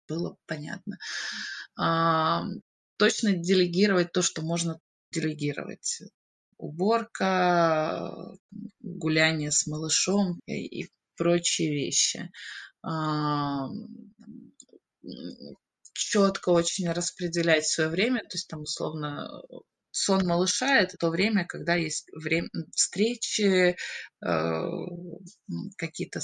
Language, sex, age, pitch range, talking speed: Russian, female, 20-39, 160-200 Hz, 80 wpm